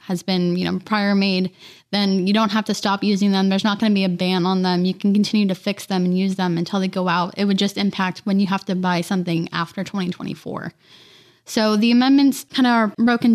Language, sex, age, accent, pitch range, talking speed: English, female, 10-29, American, 190-220 Hz, 245 wpm